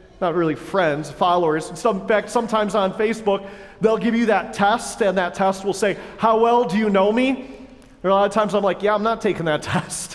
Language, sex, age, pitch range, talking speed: English, male, 40-59, 195-265 Hz, 225 wpm